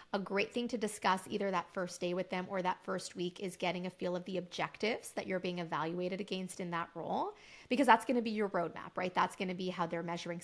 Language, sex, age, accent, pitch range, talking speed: English, female, 20-39, American, 175-220 Hz, 260 wpm